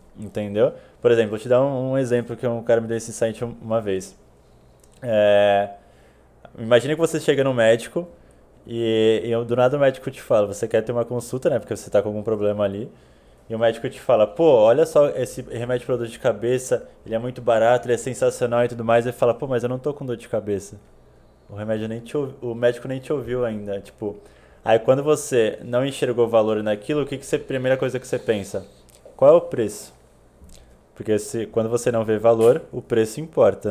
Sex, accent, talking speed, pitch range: male, Brazilian, 225 wpm, 105-125 Hz